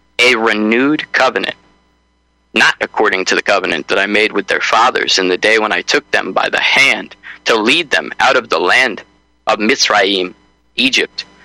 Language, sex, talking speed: English, male, 180 wpm